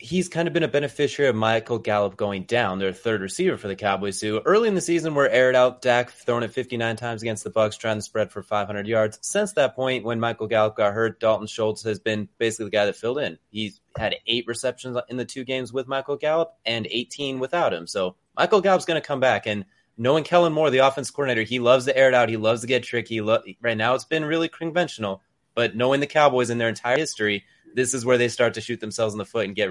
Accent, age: American, 20-39